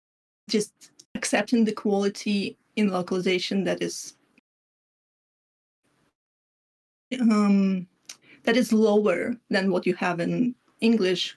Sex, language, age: female, English, 20-39